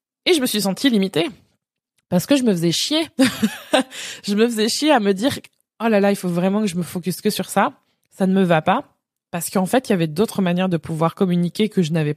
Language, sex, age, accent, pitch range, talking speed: French, female, 20-39, French, 180-220 Hz, 250 wpm